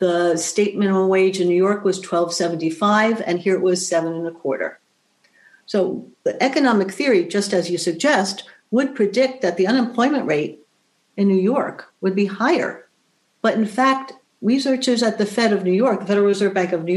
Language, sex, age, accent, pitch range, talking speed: English, female, 60-79, American, 180-220 Hz, 195 wpm